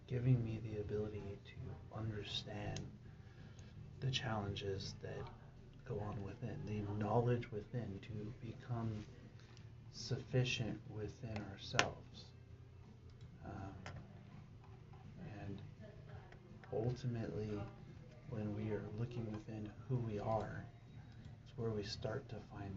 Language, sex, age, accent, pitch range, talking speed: English, male, 30-49, American, 110-125 Hz, 100 wpm